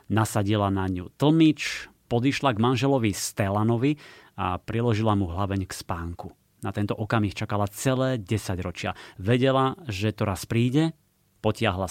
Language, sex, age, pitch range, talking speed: Slovak, male, 30-49, 100-120 Hz, 135 wpm